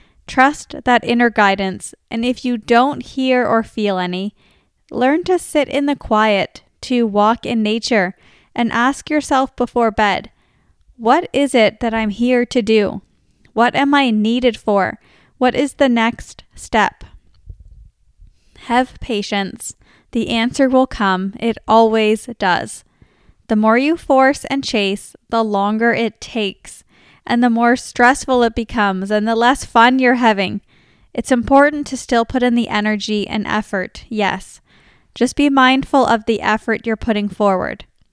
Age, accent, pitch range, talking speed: 10-29, American, 215-255 Hz, 150 wpm